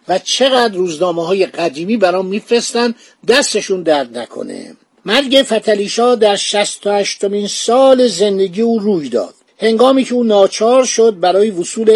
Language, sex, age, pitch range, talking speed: Persian, male, 50-69, 185-235 Hz, 130 wpm